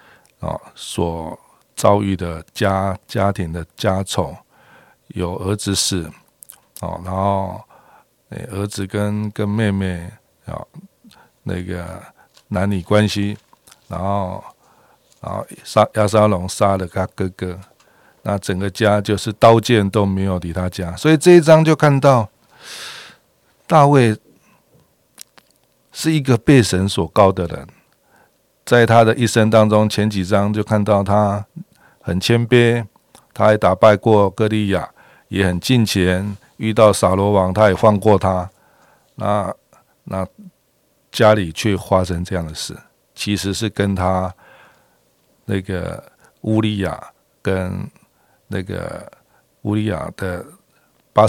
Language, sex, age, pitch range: Chinese, male, 50-69, 95-110 Hz